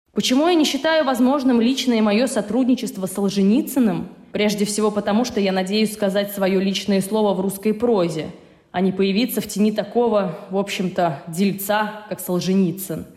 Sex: female